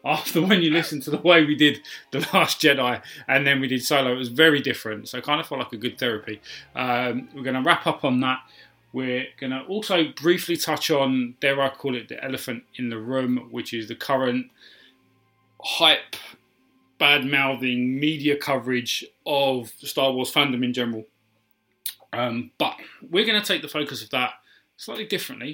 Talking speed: 190 wpm